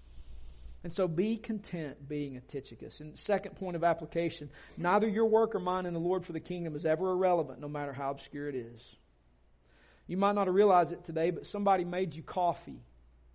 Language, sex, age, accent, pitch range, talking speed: English, male, 40-59, American, 115-190 Hz, 200 wpm